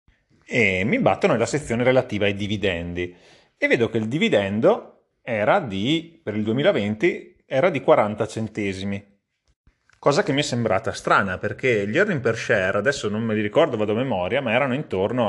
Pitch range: 105-130 Hz